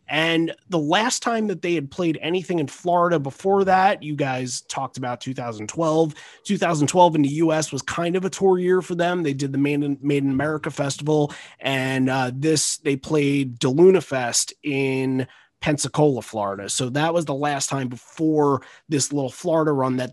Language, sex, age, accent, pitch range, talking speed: English, male, 30-49, American, 130-170 Hz, 180 wpm